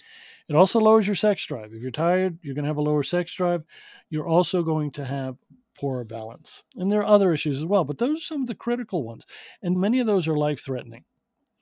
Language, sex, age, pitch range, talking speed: English, male, 50-69, 135-195 Hz, 230 wpm